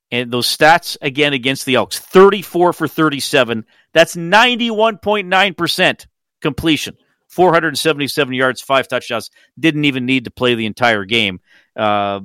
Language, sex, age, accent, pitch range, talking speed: English, male, 40-59, American, 110-150 Hz, 120 wpm